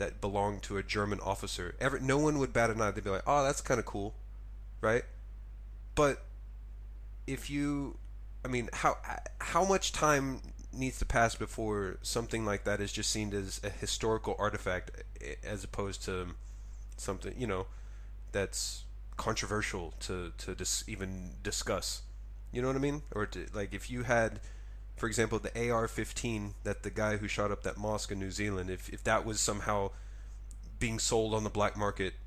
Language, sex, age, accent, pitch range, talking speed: English, male, 30-49, American, 100-115 Hz, 175 wpm